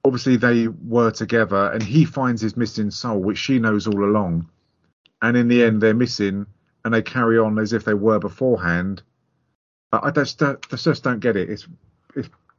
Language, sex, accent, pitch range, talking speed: English, male, British, 100-120 Hz, 195 wpm